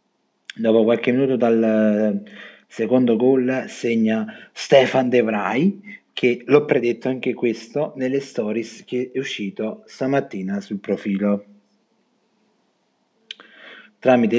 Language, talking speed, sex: Italian, 95 wpm, male